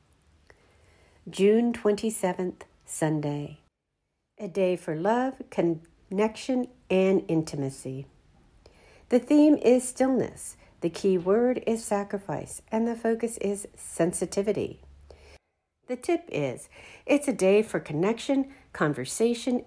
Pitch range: 160-245 Hz